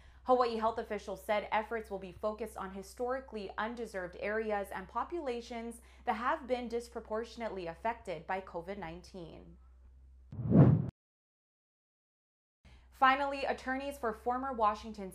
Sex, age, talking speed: female, 20-39, 105 wpm